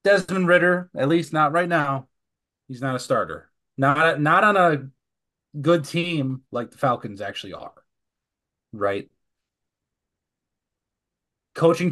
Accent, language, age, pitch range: American, English, 30-49, 130-175 Hz